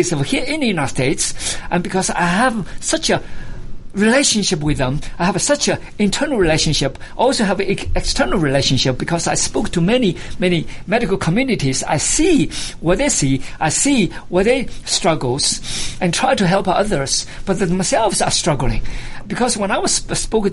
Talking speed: 170 wpm